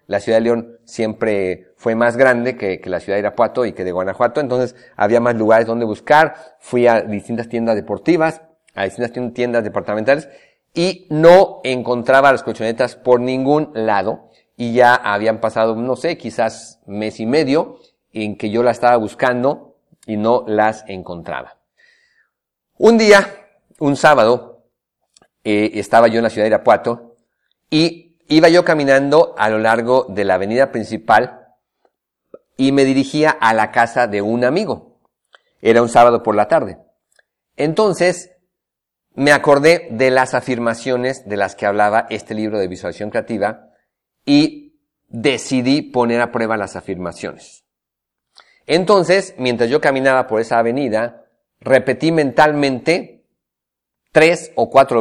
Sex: male